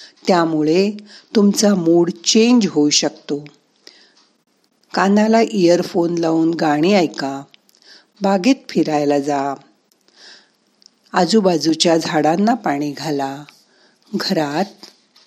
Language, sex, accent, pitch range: Marathi, female, native, 155-210 Hz